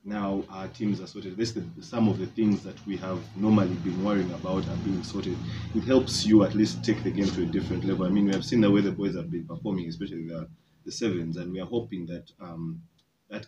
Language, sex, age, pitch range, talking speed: English, male, 30-49, 90-105 Hz, 255 wpm